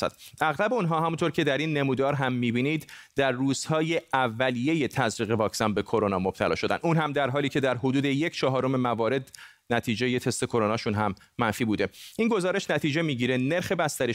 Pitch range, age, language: 115-145 Hz, 30-49, Persian